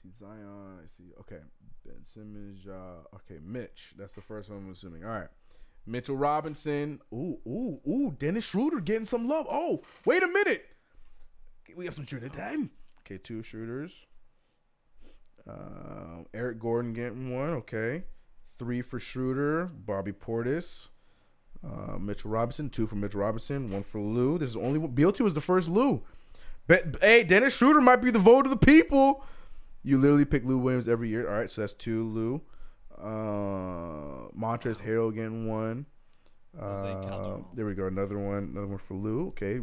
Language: English